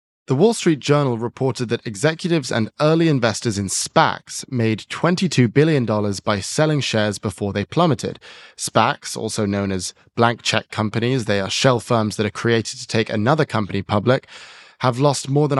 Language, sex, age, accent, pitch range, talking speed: English, male, 10-29, British, 105-135 Hz, 170 wpm